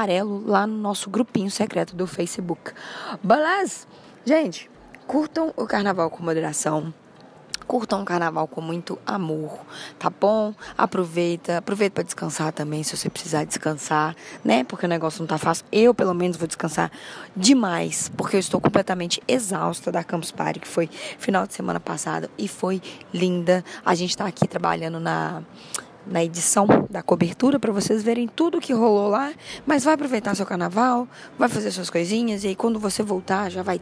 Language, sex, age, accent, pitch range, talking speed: Portuguese, female, 20-39, Brazilian, 170-215 Hz, 170 wpm